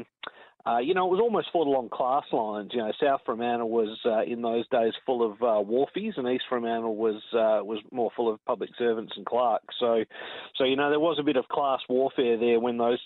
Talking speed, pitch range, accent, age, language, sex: 230 wpm, 115-140 Hz, Australian, 40-59, English, male